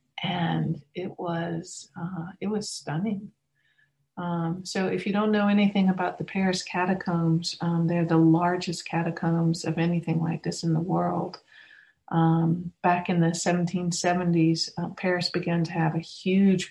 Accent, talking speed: American, 150 wpm